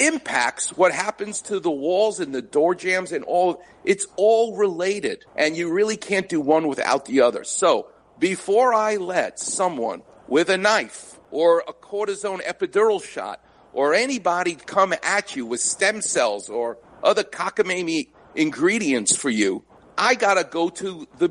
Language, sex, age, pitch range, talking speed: English, male, 50-69, 170-215 Hz, 160 wpm